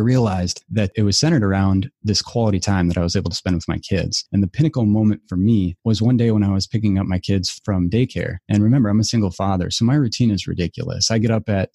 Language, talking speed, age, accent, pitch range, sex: English, 260 wpm, 30-49, American, 95-115 Hz, male